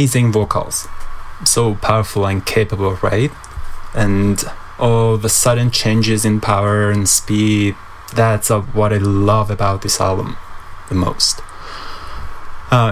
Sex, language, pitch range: male, English, 95-115 Hz